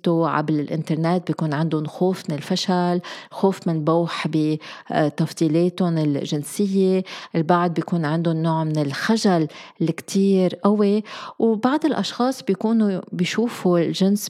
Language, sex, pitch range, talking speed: Arabic, female, 160-195 Hz, 105 wpm